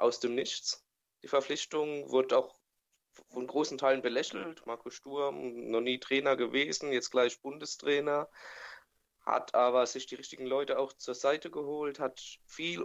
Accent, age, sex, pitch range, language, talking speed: German, 20-39, male, 115-135 Hz, German, 150 wpm